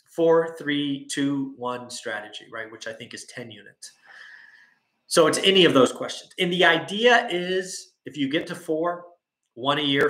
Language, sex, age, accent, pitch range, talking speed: English, male, 30-49, American, 125-175 Hz, 180 wpm